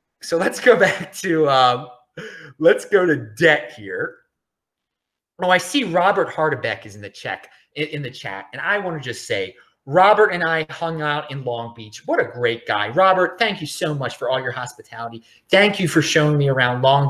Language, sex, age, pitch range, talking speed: English, male, 30-49, 130-175 Hz, 200 wpm